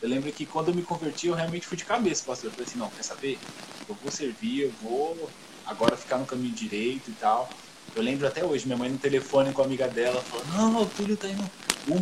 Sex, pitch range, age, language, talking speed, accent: male, 130-200 Hz, 20-39, Portuguese, 250 wpm, Brazilian